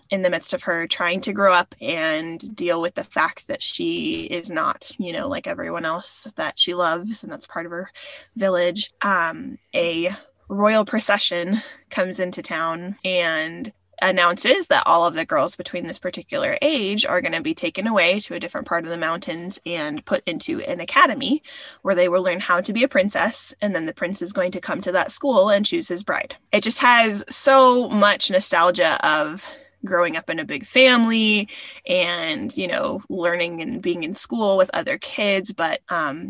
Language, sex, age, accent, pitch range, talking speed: English, female, 20-39, American, 180-275 Hz, 195 wpm